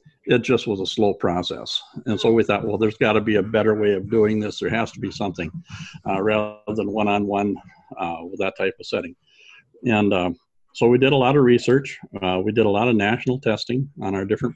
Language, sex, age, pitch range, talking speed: English, male, 60-79, 100-120 Hz, 225 wpm